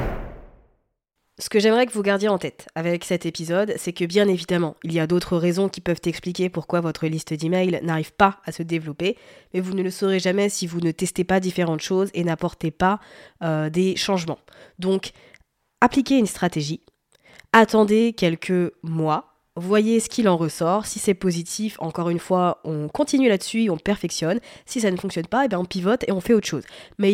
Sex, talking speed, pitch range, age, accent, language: female, 190 wpm, 170-210 Hz, 20-39, French, French